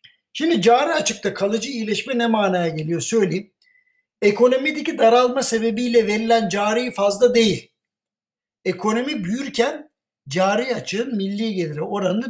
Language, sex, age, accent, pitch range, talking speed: Turkish, male, 60-79, native, 190-240 Hz, 110 wpm